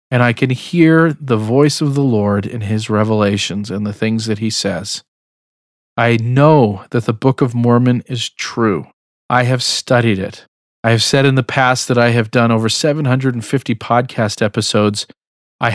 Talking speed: 175 wpm